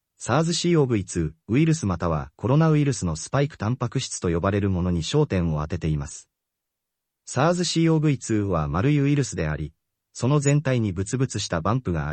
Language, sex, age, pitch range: Japanese, male, 30-49, 85-140 Hz